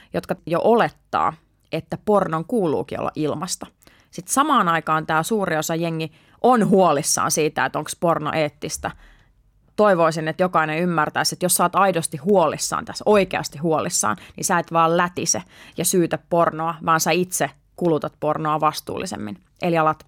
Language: Finnish